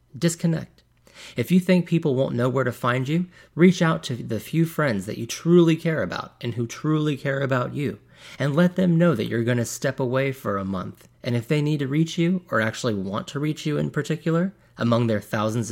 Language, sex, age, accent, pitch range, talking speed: English, male, 30-49, American, 110-155 Hz, 225 wpm